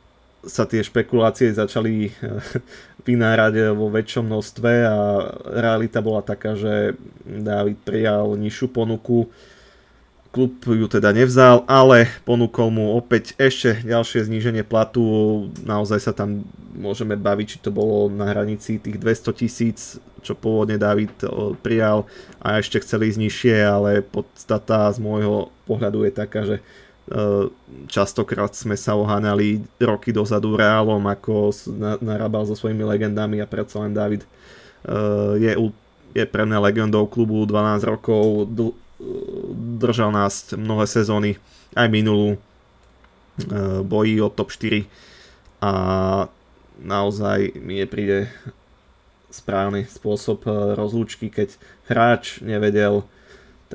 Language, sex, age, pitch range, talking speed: Slovak, male, 20-39, 105-115 Hz, 115 wpm